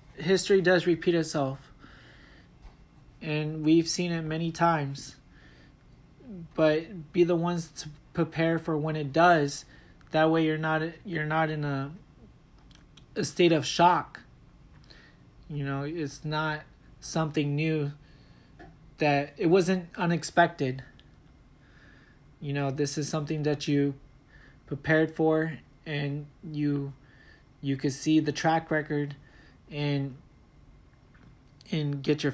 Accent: American